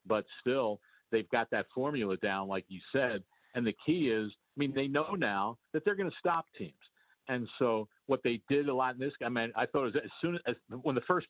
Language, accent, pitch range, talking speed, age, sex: English, American, 120-155 Hz, 240 wpm, 50-69, male